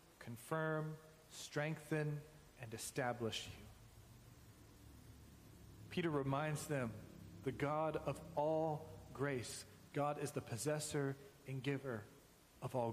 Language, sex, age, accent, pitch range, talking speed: English, male, 40-59, American, 120-155 Hz, 95 wpm